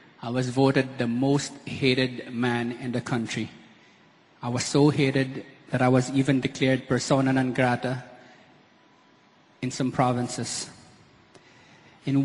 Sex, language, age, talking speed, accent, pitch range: male, Filipino, 20-39, 125 wpm, native, 125-140 Hz